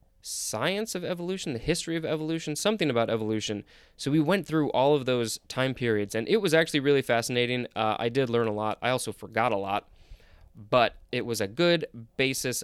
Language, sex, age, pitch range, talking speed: English, male, 20-39, 115-155 Hz, 200 wpm